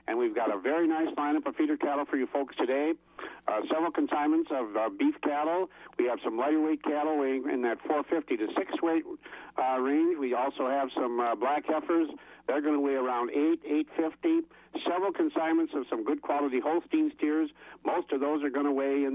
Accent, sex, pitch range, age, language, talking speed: American, male, 130-180 Hz, 50-69, English, 205 wpm